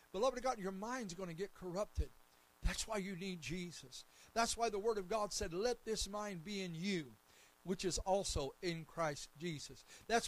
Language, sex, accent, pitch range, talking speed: English, male, American, 190-250 Hz, 195 wpm